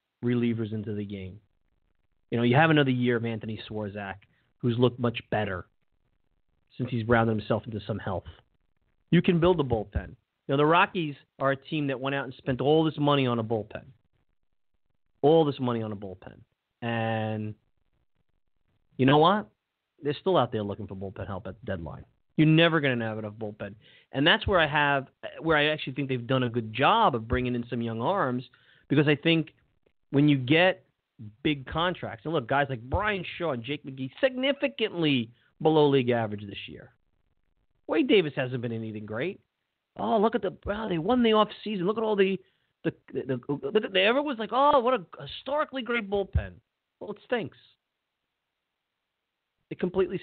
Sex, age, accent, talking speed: male, 30-49, American, 180 wpm